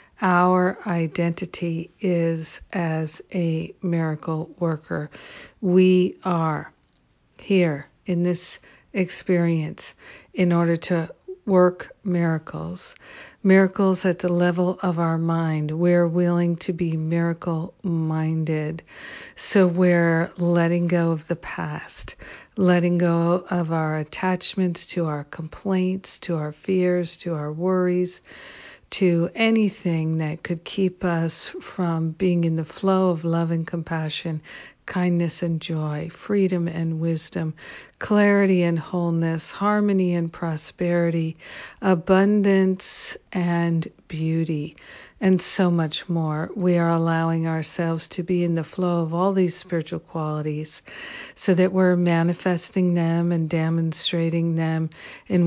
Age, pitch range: 60-79, 165-185 Hz